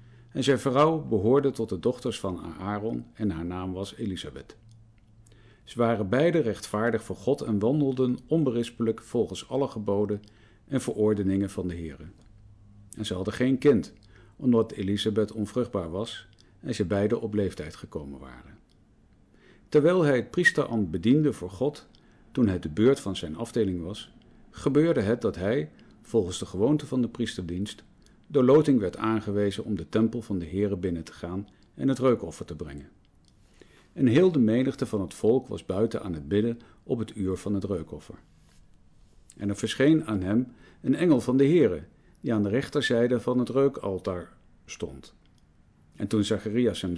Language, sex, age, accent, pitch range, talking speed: Dutch, male, 50-69, Dutch, 95-125 Hz, 165 wpm